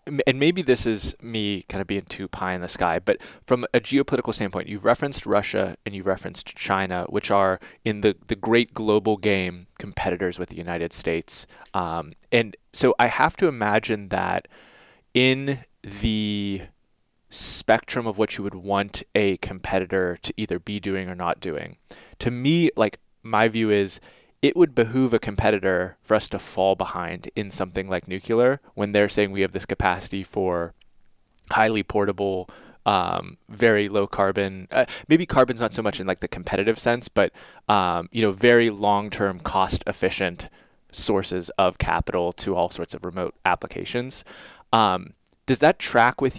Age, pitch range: 20-39, 95-110 Hz